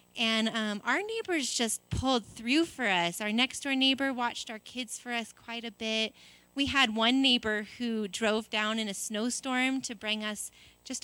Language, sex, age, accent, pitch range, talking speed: English, female, 30-49, American, 215-275 Hz, 185 wpm